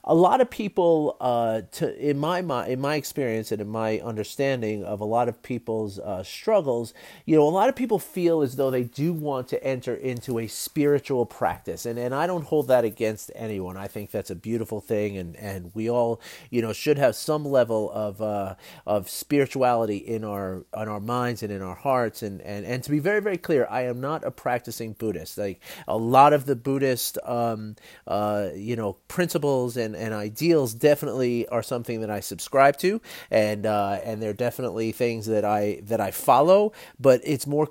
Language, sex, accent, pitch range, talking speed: English, male, American, 105-140 Hz, 200 wpm